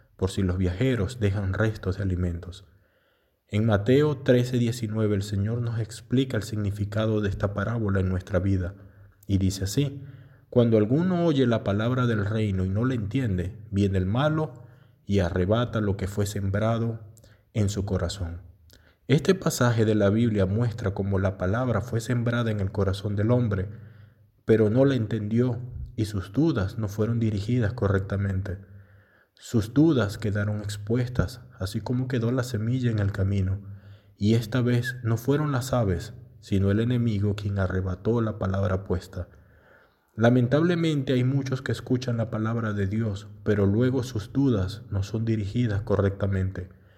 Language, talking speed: Spanish, 155 wpm